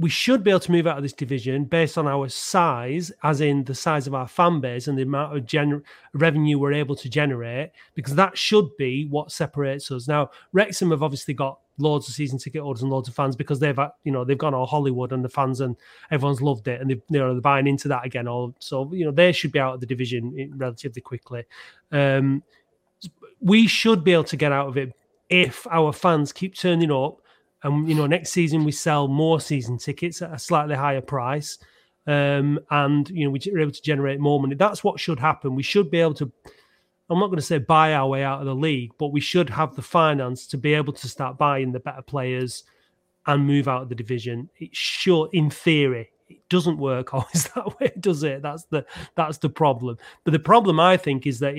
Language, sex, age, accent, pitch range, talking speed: English, male, 30-49, British, 135-160 Hz, 225 wpm